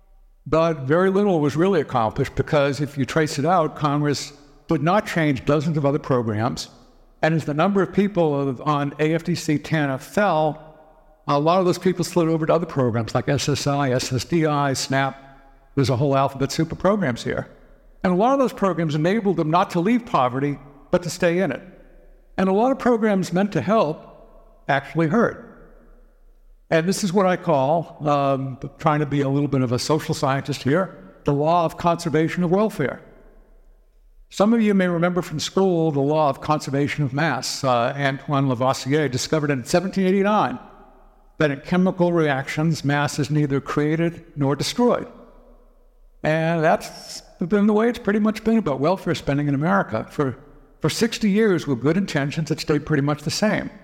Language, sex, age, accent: English, male, 60-79, American